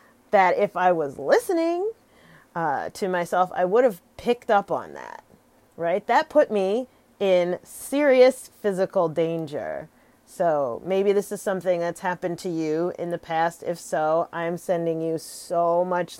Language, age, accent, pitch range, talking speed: English, 40-59, American, 170-215 Hz, 155 wpm